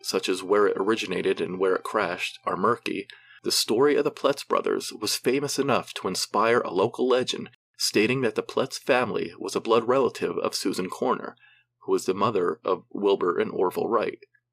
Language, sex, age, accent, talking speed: English, male, 40-59, American, 190 wpm